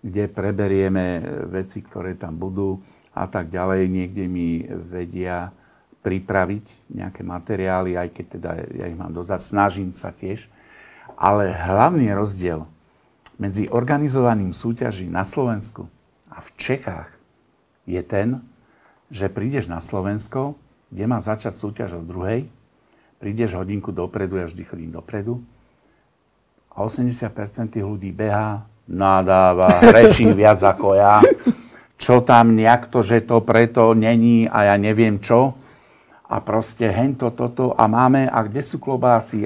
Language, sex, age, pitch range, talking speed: Slovak, male, 50-69, 95-120 Hz, 130 wpm